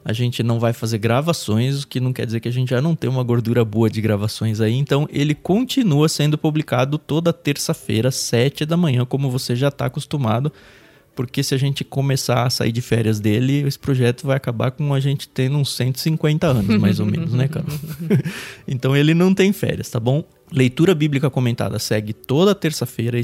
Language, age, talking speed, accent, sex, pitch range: Portuguese, 20-39, 200 wpm, Brazilian, male, 115-160 Hz